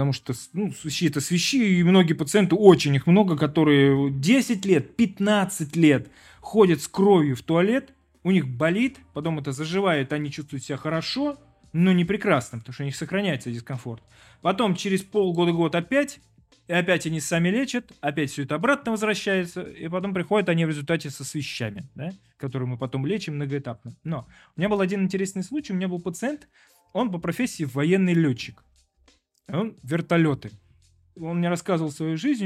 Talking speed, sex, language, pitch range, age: 170 wpm, male, Russian, 135-185 Hz, 20-39